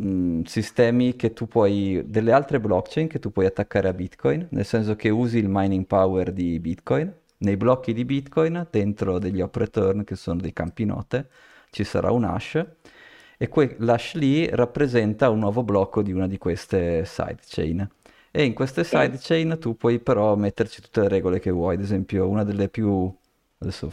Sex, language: male, Italian